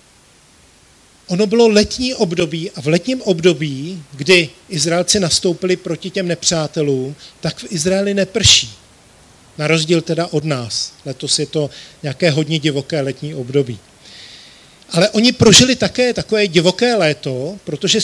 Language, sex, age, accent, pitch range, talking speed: Czech, male, 40-59, native, 150-190 Hz, 130 wpm